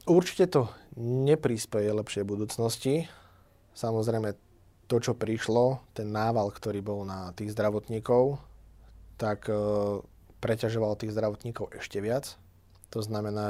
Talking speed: 105 wpm